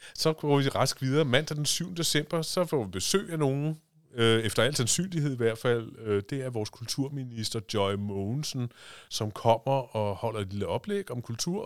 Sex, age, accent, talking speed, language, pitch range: male, 30-49, native, 185 wpm, Danish, 100-130 Hz